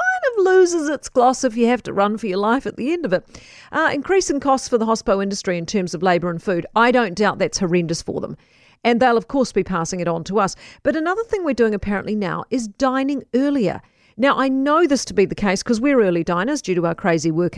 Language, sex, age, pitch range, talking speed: English, female, 40-59, 195-280 Hz, 250 wpm